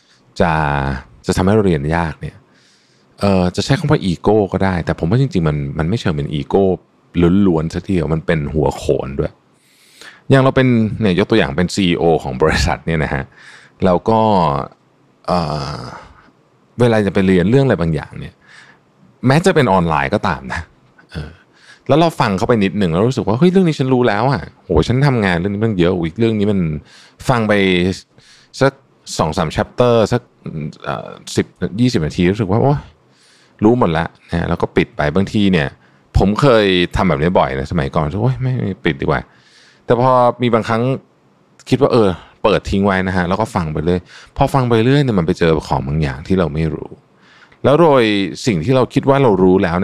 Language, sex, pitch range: Thai, male, 85-120 Hz